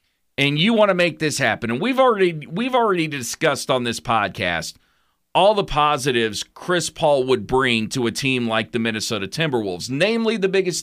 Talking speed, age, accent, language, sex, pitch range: 185 wpm, 40-59, American, English, male, 130-175 Hz